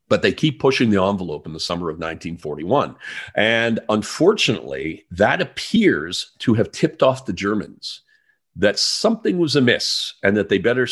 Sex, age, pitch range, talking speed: male, 40-59, 95-130 Hz, 160 wpm